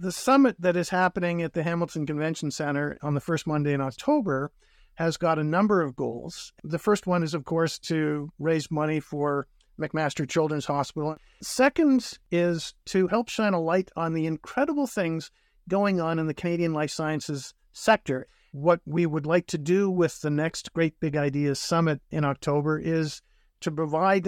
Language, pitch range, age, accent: English, 150-180 Hz, 50-69, American